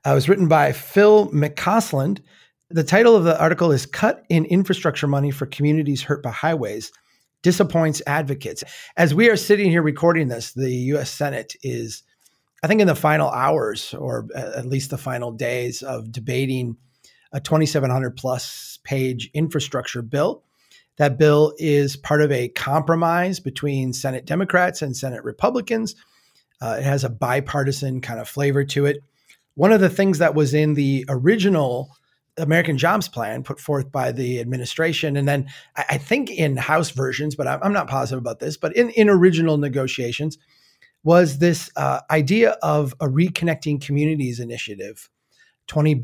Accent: American